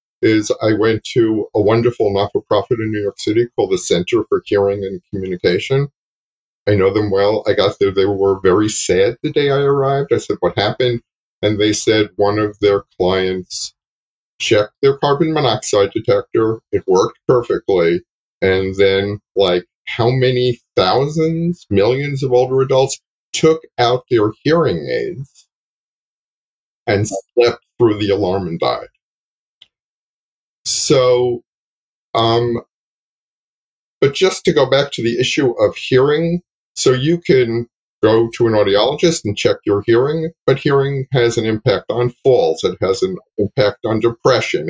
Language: English